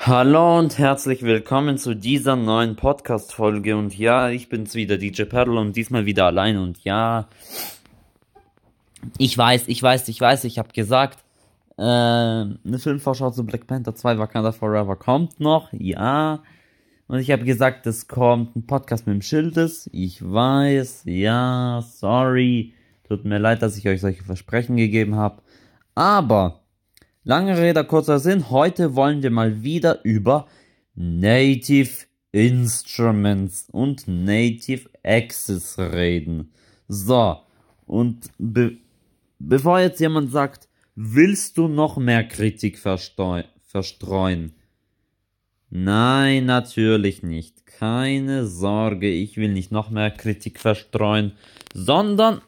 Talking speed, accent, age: 125 wpm, German, 20-39